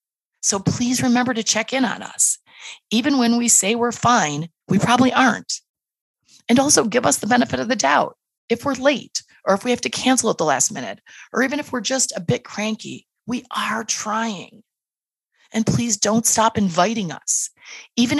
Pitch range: 185-235 Hz